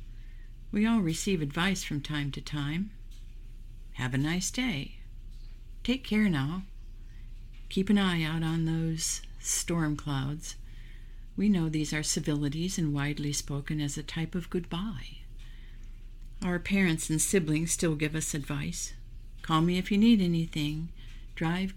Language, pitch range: English, 115-175 Hz